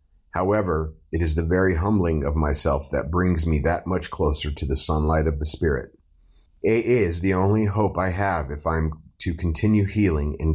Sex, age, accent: male, 30-49, American